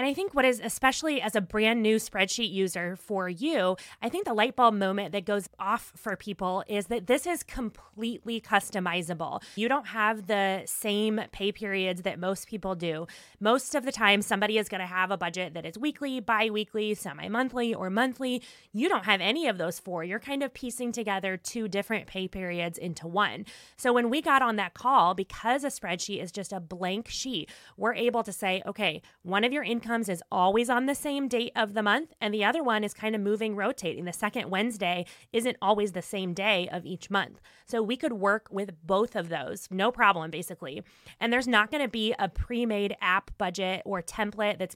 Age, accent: 20-39, American